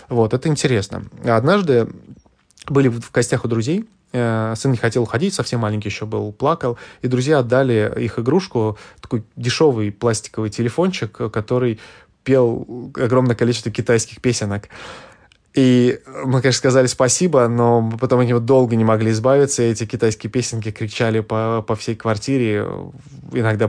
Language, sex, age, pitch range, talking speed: Russian, male, 20-39, 110-125 Hz, 140 wpm